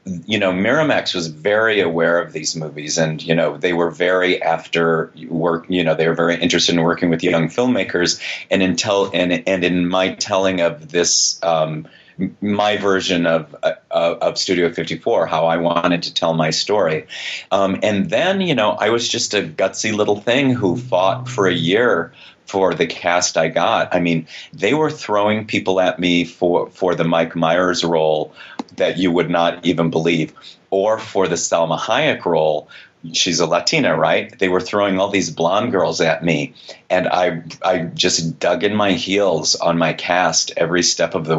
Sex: male